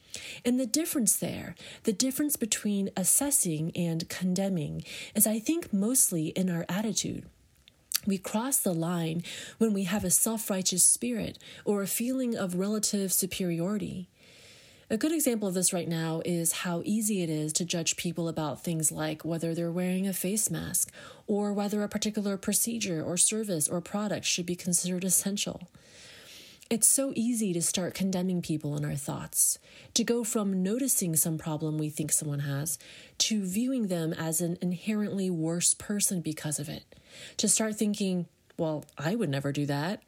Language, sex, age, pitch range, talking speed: English, female, 30-49, 165-215 Hz, 165 wpm